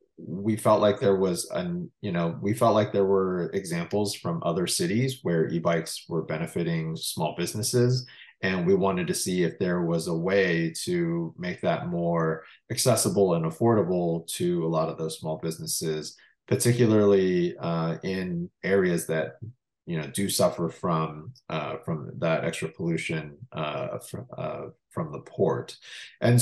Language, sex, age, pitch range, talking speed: English, male, 30-49, 85-125 Hz, 155 wpm